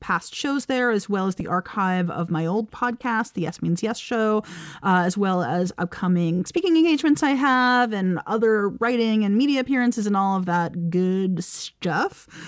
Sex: female